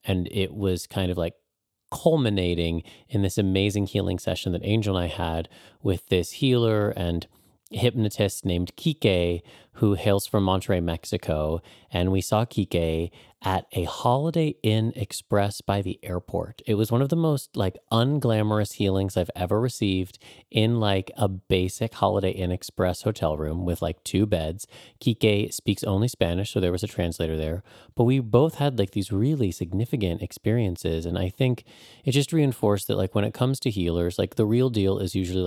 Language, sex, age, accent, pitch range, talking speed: English, male, 30-49, American, 90-115 Hz, 175 wpm